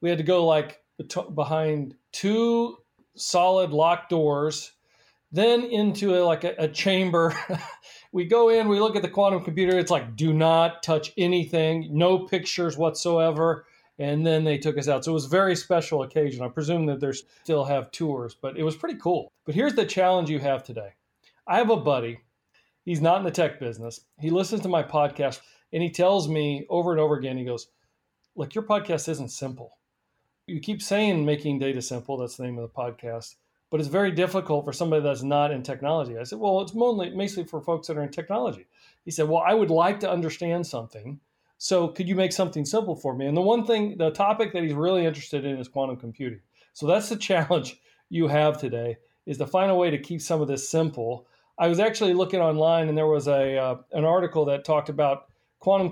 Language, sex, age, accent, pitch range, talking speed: English, male, 40-59, American, 145-180 Hz, 210 wpm